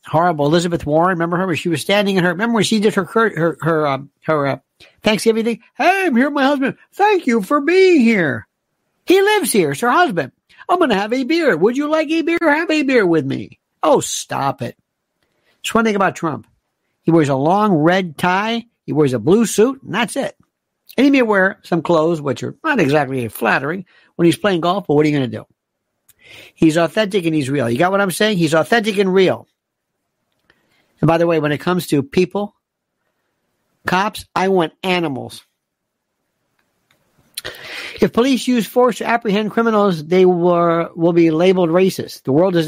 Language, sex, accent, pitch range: English, male, American, 165-230 Hz